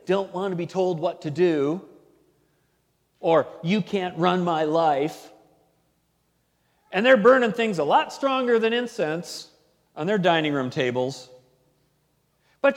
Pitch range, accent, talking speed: 195-285 Hz, American, 135 wpm